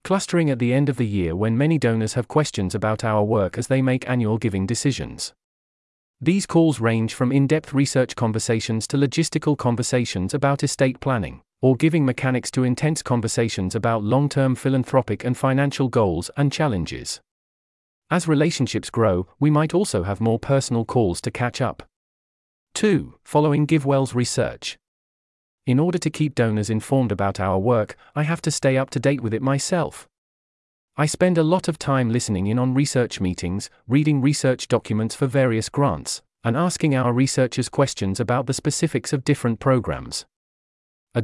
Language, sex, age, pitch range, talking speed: English, male, 40-59, 110-140 Hz, 165 wpm